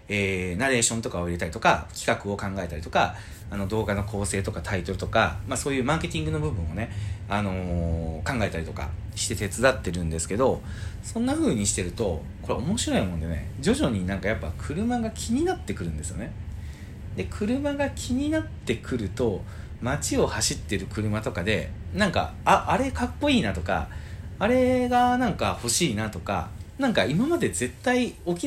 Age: 40-59